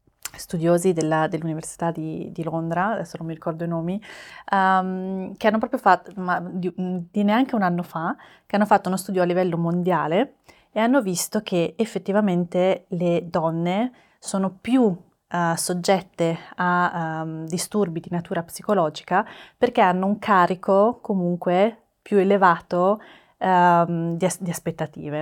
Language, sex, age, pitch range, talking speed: Italian, female, 20-39, 165-195 Hz, 140 wpm